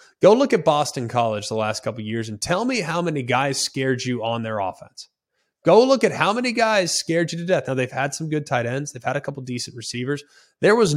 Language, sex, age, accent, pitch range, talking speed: English, male, 20-39, American, 125-165 Hz, 255 wpm